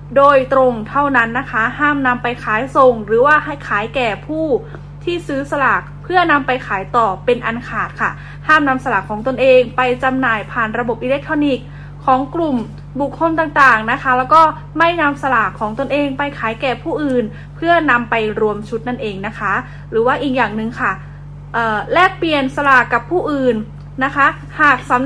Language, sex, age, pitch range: Thai, female, 10-29, 225-285 Hz